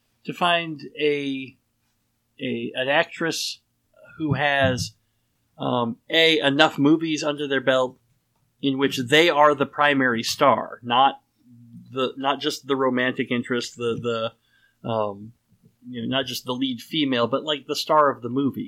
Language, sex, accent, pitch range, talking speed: English, male, American, 115-150 Hz, 150 wpm